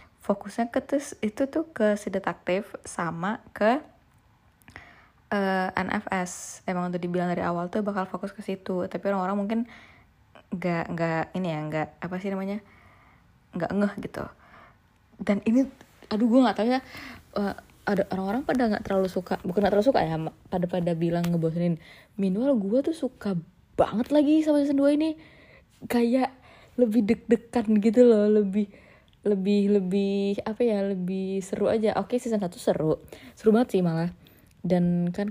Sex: female